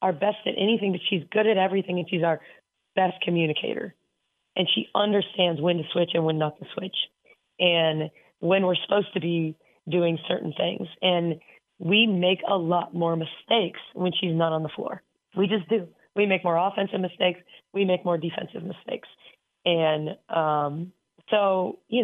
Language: English